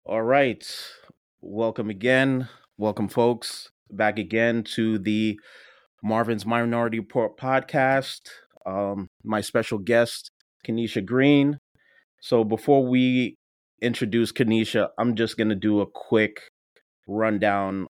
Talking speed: 110 wpm